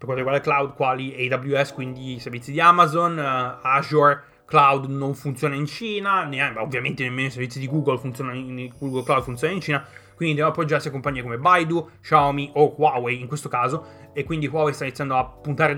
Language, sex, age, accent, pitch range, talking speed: Italian, male, 20-39, native, 130-160 Hz, 200 wpm